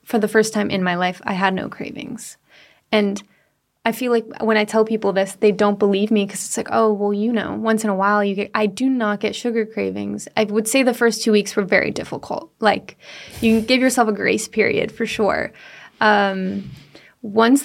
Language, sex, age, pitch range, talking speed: English, female, 20-39, 200-225 Hz, 220 wpm